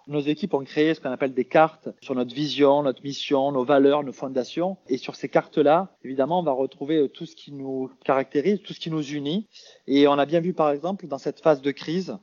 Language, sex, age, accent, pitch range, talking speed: French, male, 30-49, French, 150-190 Hz, 235 wpm